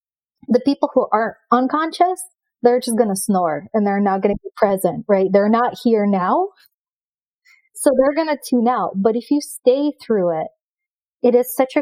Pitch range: 210-265 Hz